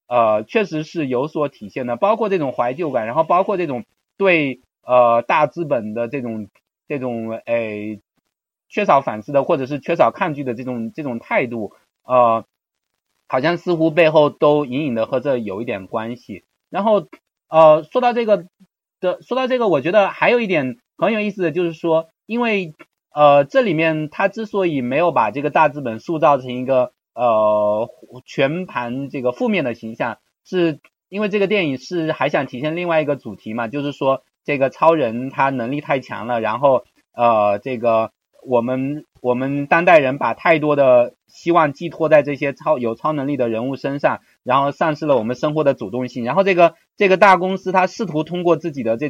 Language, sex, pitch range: Chinese, male, 125-170 Hz